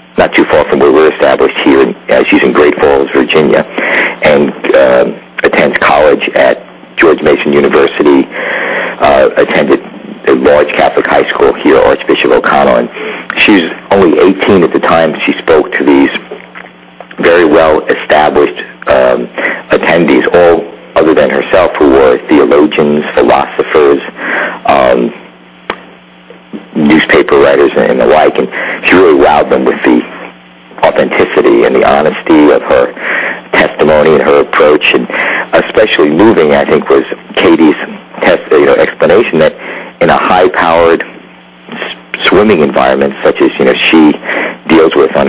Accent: American